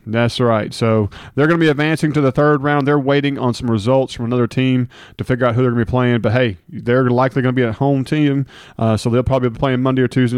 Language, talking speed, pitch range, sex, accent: English, 280 wpm, 115-140 Hz, male, American